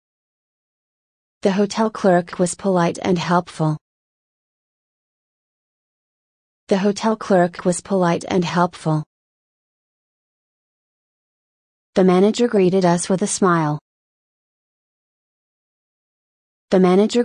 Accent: American